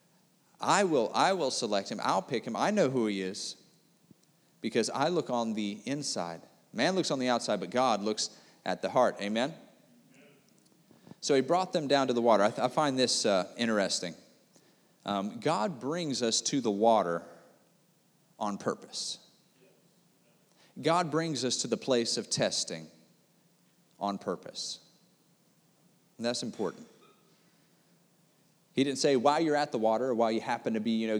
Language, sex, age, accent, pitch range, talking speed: English, male, 40-59, American, 110-160 Hz, 160 wpm